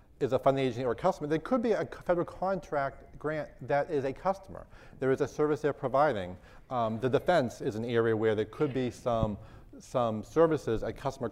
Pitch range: 110-135 Hz